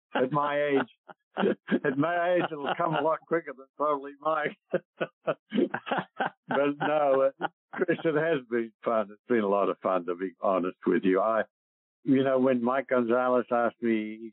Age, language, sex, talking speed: 60-79, English, male, 175 wpm